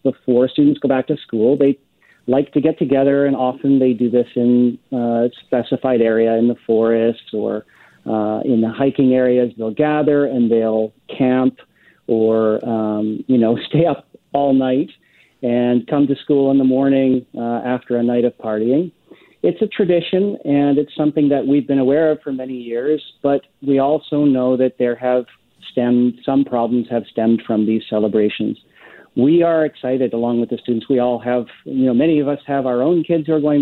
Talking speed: 190 wpm